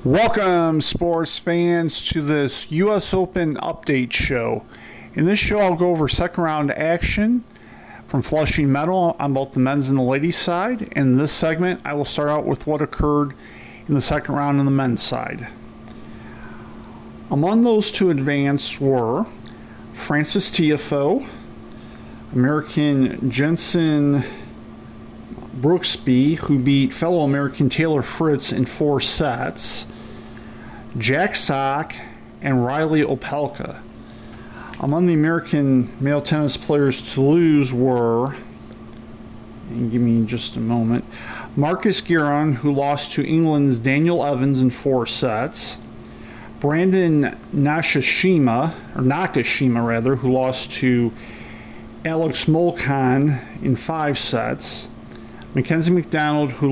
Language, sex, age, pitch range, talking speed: English, male, 50-69, 130-160 Hz, 120 wpm